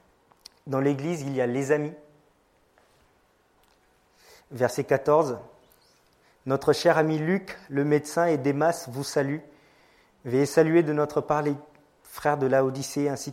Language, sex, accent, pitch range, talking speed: French, male, French, 130-155 Hz, 135 wpm